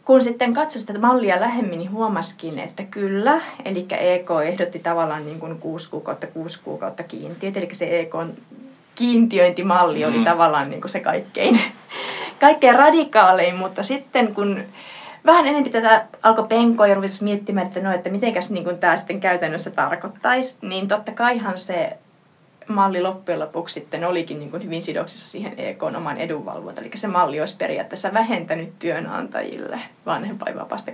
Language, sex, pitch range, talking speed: Finnish, female, 175-225 Hz, 150 wpm